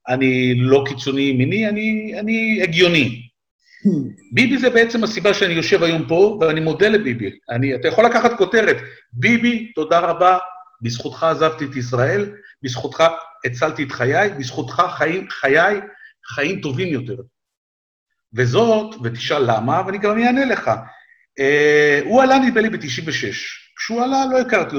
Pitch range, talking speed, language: 130-220 Hz, 140 wpm, Hebrew